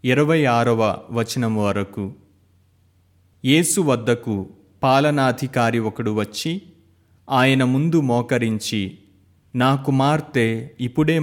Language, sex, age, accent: Telugu, male, 30-49, native